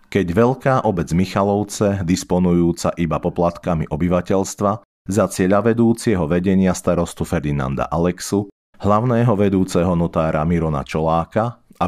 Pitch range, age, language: 85-105 Hz, 40-59, Slovak